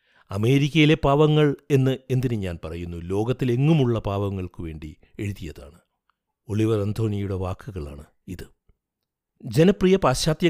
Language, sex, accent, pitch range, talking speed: Malayalam, male, native, 100-130 Hz, 90 wpm